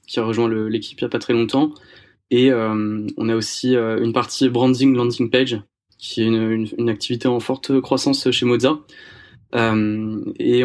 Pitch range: 110-130 Hz